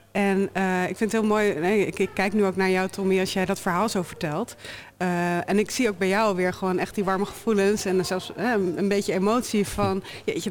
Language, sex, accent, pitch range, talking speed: Dutch, female, Dutch, 175-205 Hz, 235 wpm